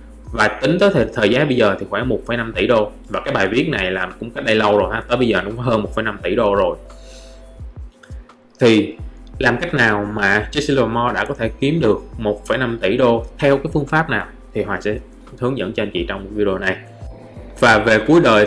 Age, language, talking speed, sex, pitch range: 20-39, Vietnamese, 225 wpm, male, 105-135 Hz